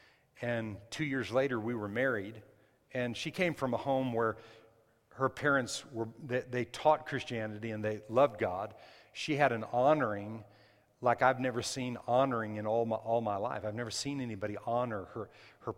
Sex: male